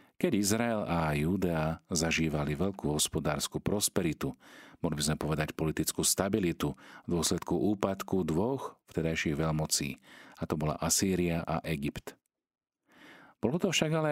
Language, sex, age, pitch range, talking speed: Slovak, male, 40-59, 80-100 Hz, 125 wpm